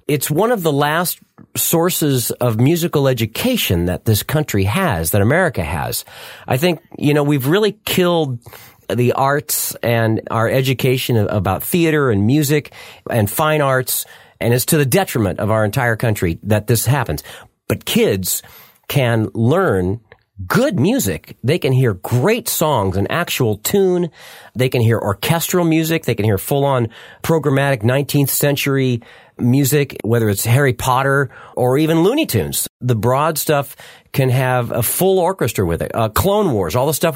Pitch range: 115-155 Hz